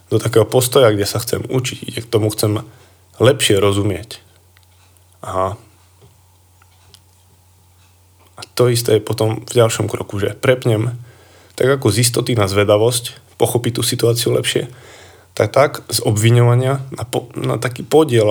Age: 20-39